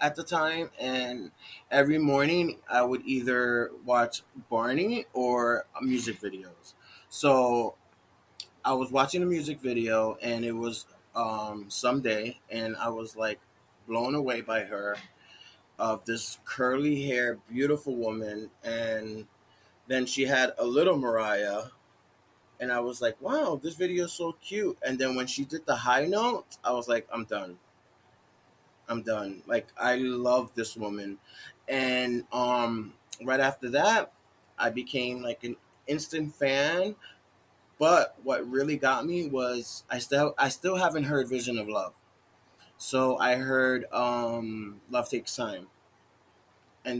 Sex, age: male, 20-39